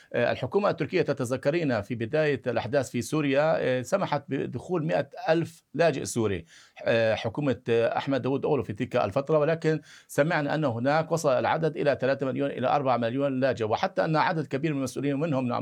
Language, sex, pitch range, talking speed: Arabic, male, 130-160 Hz, 160 wpm